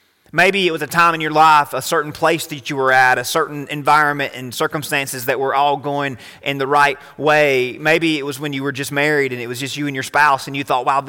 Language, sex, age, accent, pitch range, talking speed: English, male, 30-49, American, 145-205 Hz, 260 wpm